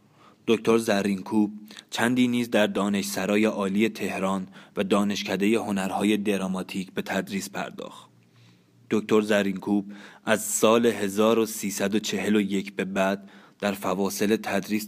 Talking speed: 105 wpm